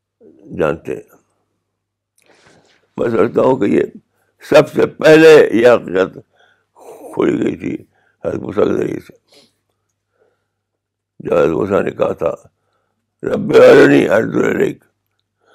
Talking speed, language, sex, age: 95 wpm, Urdu, male, 60-79